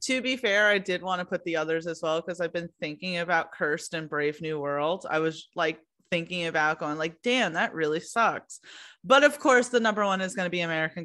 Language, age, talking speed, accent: English, 30-49, 240 wpm, American